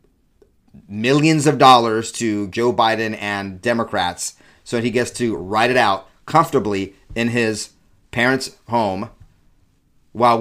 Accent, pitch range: American, 95-135 Hz